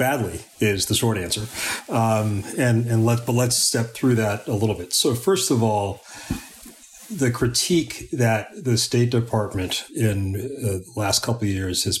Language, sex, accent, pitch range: English, male, American, 100-115 Hz